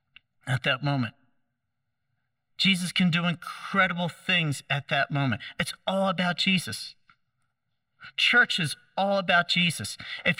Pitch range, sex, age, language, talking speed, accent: 130-175 Hz, male, 40-59, English, 120 wpm, American